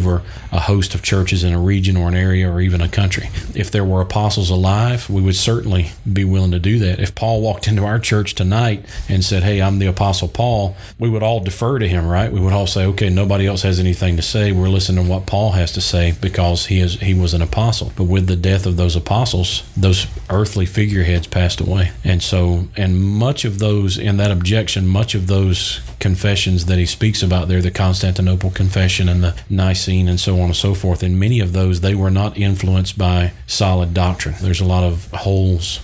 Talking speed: 220 wpm